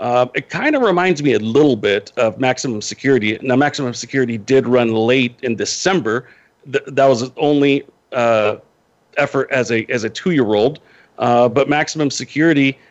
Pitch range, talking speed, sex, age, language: 125-155 Hz, 165 wpm, male, 40-59, English